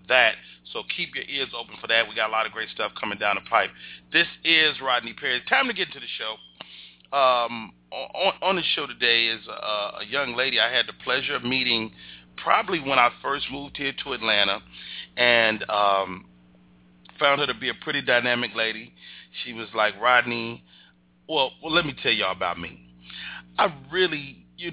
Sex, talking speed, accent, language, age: male, 190 wpm, American, English, 30-49